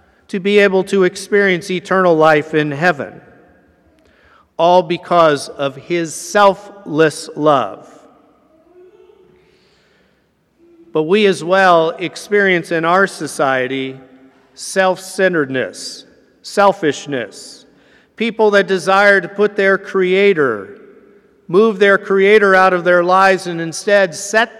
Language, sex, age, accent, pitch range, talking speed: English, male, 50-69, American, 165-200 Hz, 100 wpm